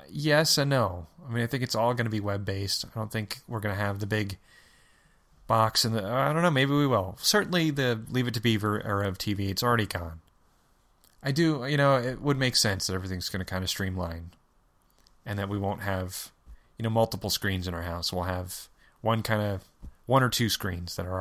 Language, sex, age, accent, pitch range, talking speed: English, male, 30-49, American, 95-120 Hz, 230 wpm